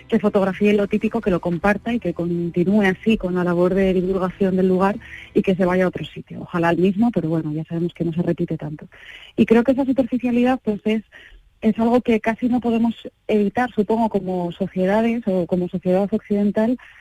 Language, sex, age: Spanish, female, 30-49